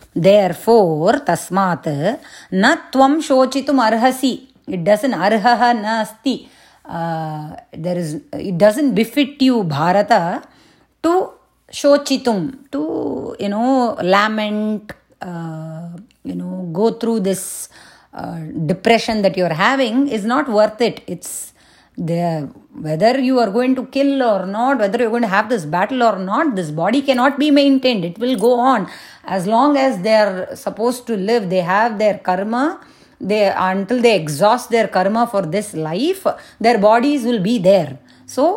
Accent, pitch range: Indian, 170-250 Hz